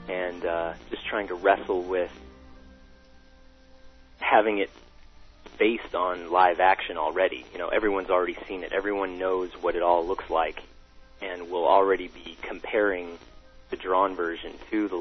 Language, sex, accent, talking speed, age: English, male, American, 145 wpm, 30-49